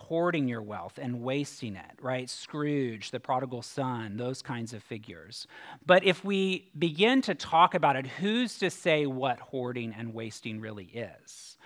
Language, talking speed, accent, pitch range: English, 165 wpm, American, 120-160 Hz